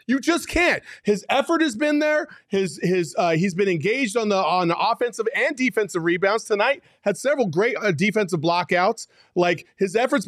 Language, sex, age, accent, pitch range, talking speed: English, male, 30-49, American, 190-245 Hz, 180 wpm